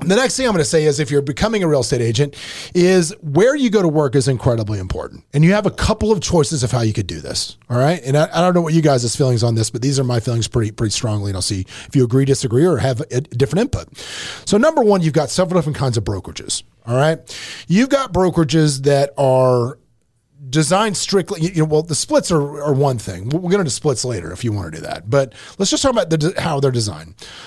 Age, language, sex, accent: 30-49, English, male, American